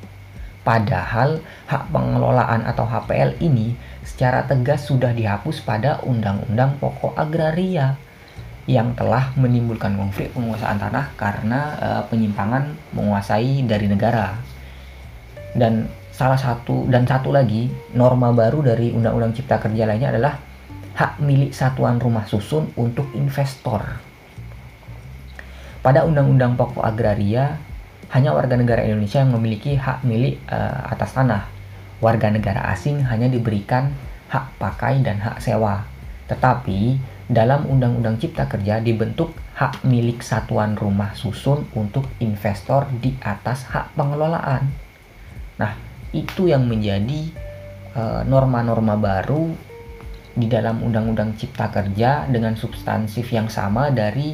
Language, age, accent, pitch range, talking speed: Indonesian, 20-39, native, 105-130 Hz, 115 wpm